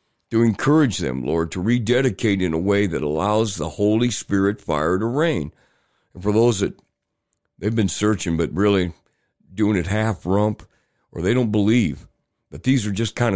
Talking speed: 170 wpm